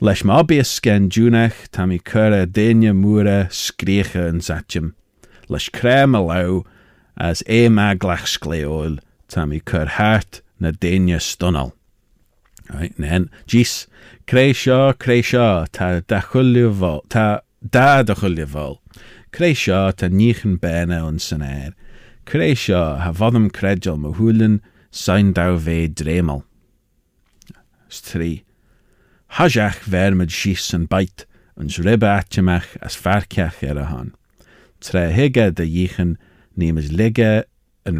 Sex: male